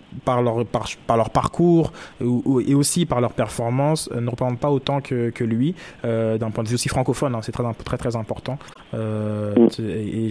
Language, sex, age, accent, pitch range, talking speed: French, male, 20-39, French, 115-135 Hz, 210 wpm